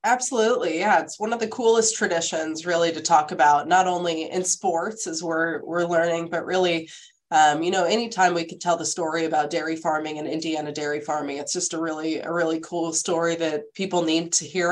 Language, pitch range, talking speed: English, 155-175 Hz, 210 wpm